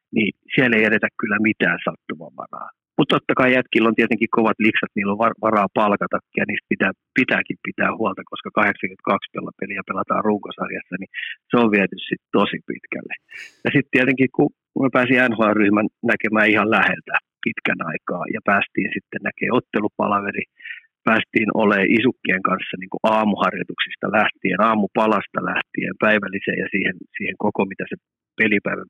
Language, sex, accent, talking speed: Finnish, male, native, 145 wpm